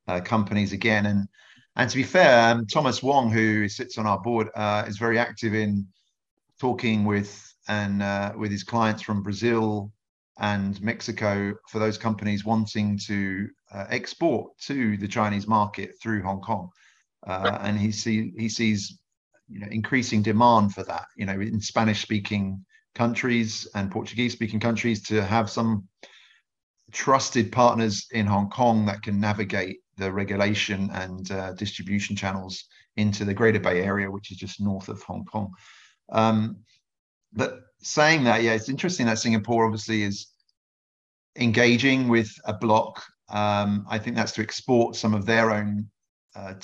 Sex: male